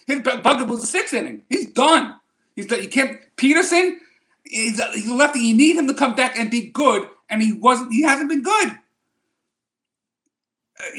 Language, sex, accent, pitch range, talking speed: English, male, American, 230-310 Hz, 190 wpm